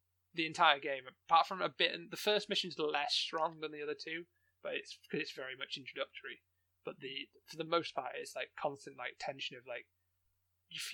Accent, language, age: British, English, 20-39